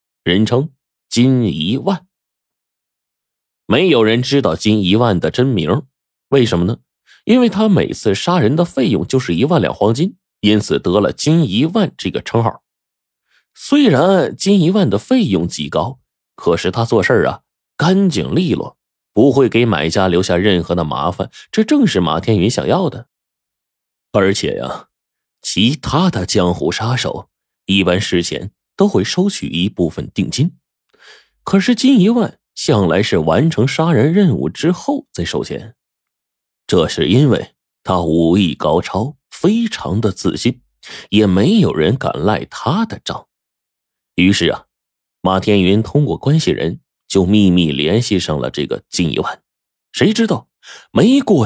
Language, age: Chinese, 20-39